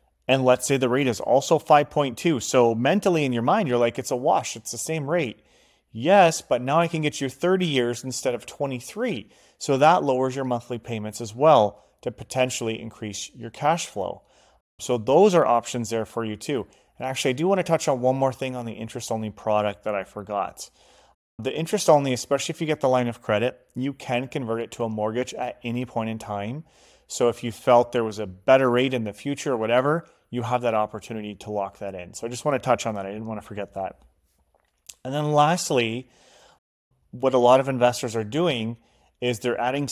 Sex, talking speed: male, 215 wpm